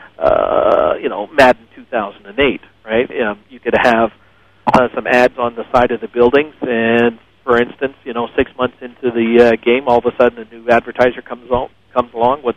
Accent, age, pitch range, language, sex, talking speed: American, 50-69, 115-140 Hz, English, male, 205 wpm